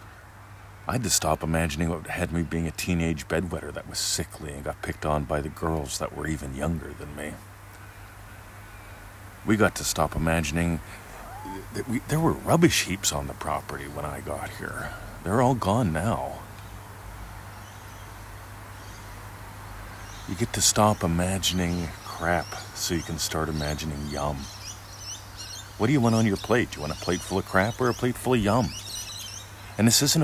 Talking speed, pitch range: 165 wpm, 85-105 Hz